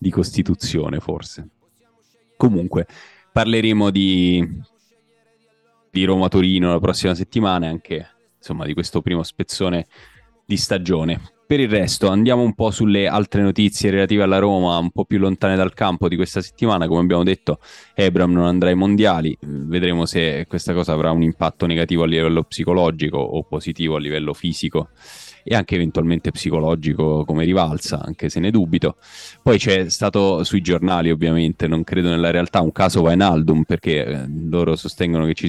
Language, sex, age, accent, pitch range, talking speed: Italian, male, 10-29, native, 80-95 Hz, 160 wpm